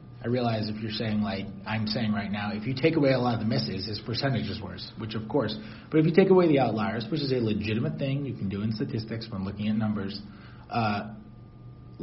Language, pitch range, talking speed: English, 105-120 Hz, 240 wpm